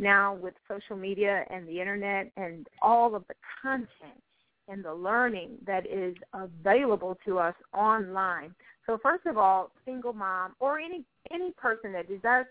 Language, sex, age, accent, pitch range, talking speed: English, female, 30-49, American, 190-240 Hz, 160 wpm